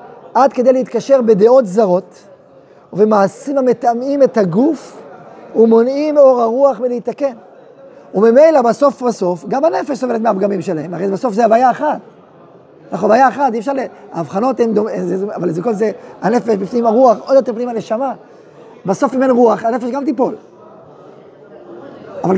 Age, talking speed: 30-49, 145 wpm